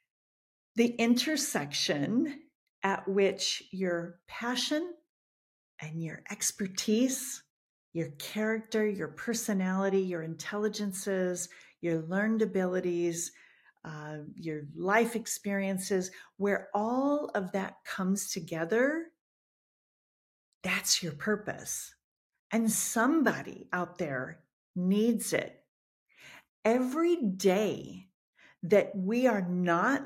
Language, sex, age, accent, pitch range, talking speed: English, female, 50-69, American, 175-230 Hz, 85 wpm